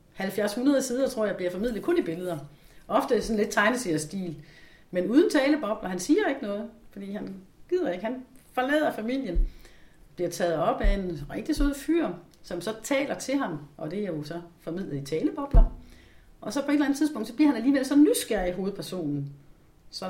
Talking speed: 200 wpm